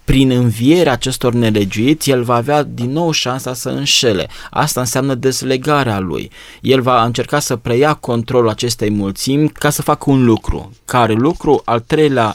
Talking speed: 160 wpm